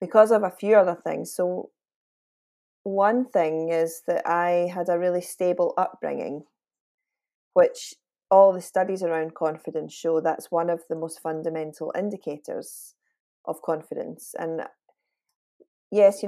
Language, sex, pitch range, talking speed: English, female, 165-200 Hz, 135 wpm